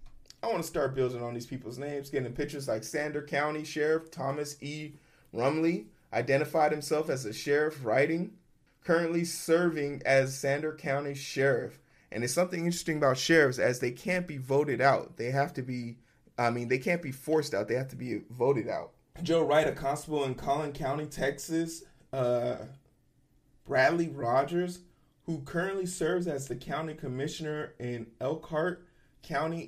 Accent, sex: American, male